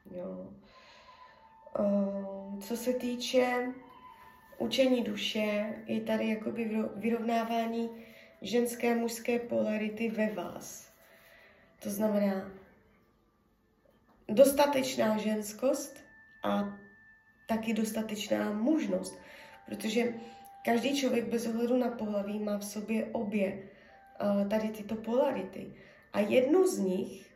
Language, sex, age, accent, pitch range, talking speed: Czech, female, 20-39, native, 200-245 Hz, 95 wpm